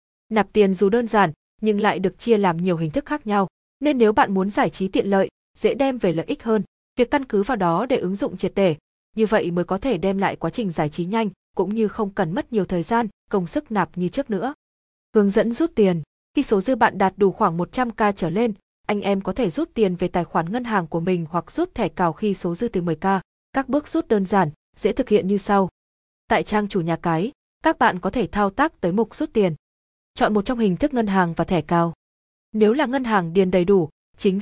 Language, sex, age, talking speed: Vietnamese, female, 20-39, 250 wpm